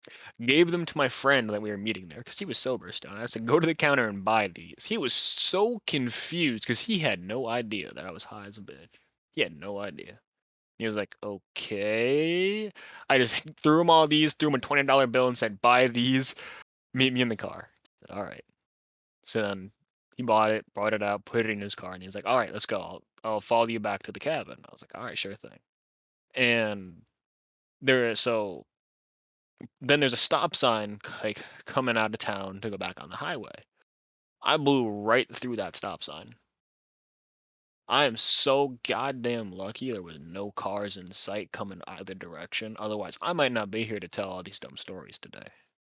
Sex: male